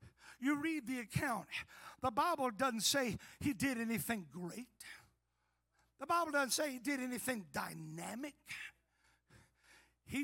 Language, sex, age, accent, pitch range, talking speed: English, male, 60-79, American, 215-305 Hz, 125 wpm